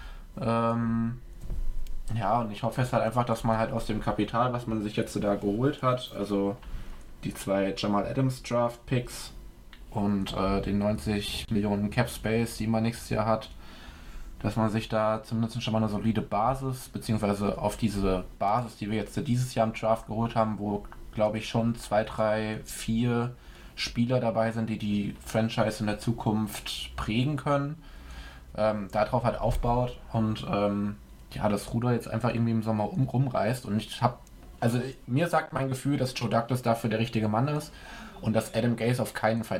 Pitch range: 105-120 Hz